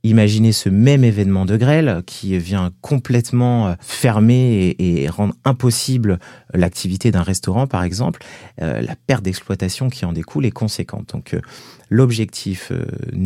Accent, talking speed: French, 145 wpm